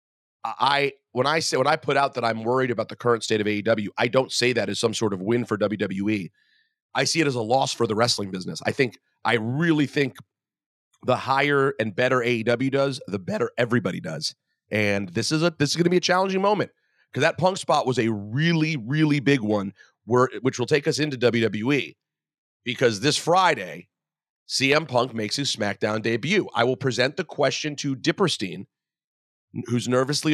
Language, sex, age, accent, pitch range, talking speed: English, male, 40-59, American, 115-155 Hz, 200 wpm